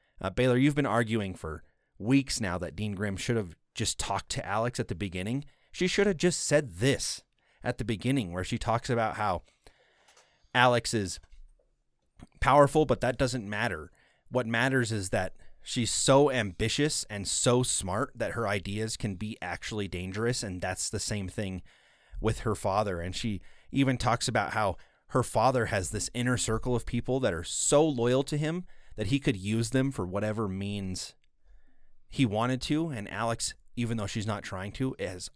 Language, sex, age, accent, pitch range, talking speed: English, male, 30-49, American, 95-125 Hz, 180 wpm